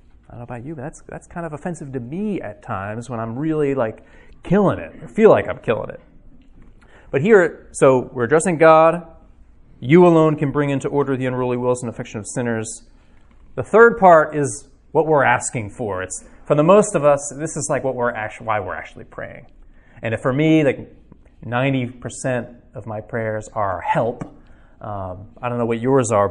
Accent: American